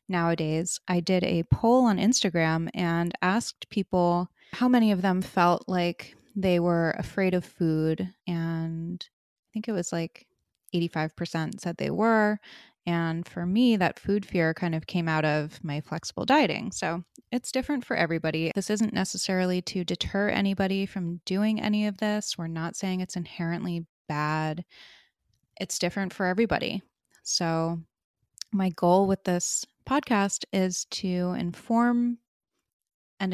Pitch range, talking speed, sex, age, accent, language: 175-210 Hz, 145 wpm, female, 20-39, American, English